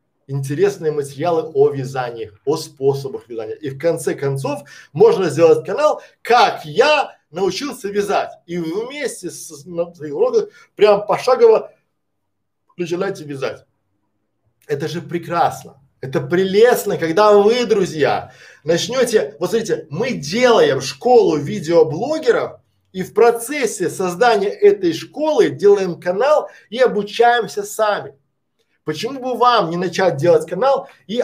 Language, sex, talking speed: Russian, male, 120 wpm